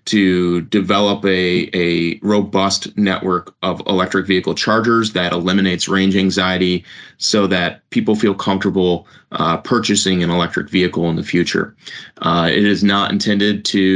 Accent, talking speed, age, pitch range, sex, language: American, 140 wpm, 30-49, 90-105 Hz, male, English